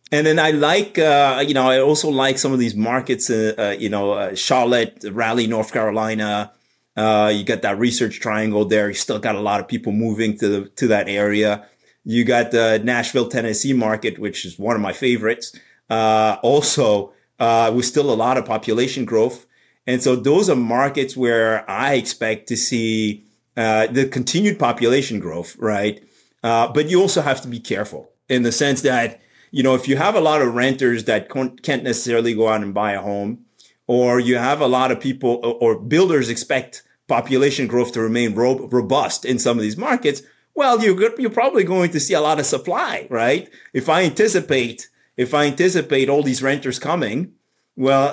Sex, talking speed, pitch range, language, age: male, 195 wpm, 110-135 Hz, English, 30-49